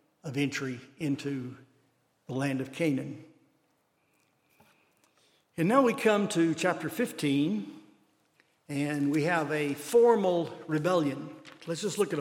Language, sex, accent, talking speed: English, male, American, 120 wpm